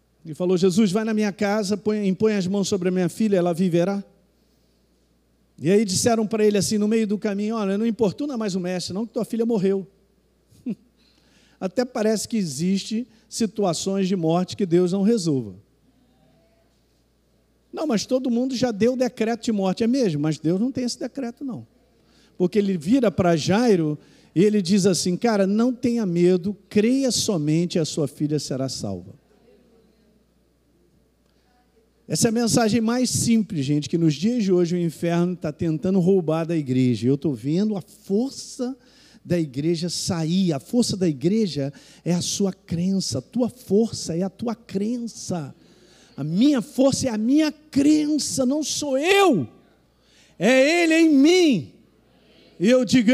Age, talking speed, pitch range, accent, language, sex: 50-69, 165 wpm, 175-235 Hz, Brazilian, Portuguese, male